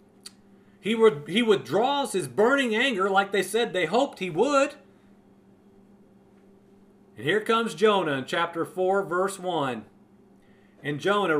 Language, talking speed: English, 125 wpm